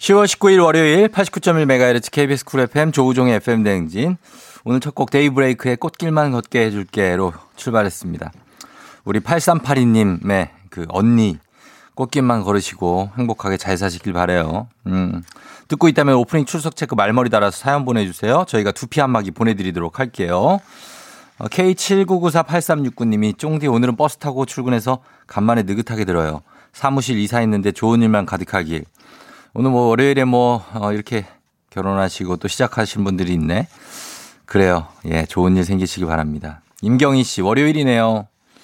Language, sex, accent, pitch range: Korean, male, native, 95-135 Hz